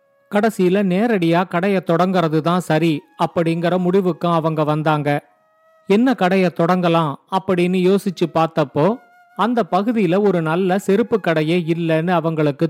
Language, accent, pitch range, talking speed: Tamil, native, 165-210 Hz, 110 wpm